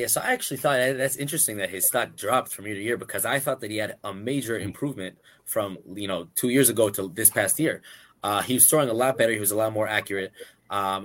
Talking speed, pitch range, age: 260 wpm, 110-145 Hz, 20-39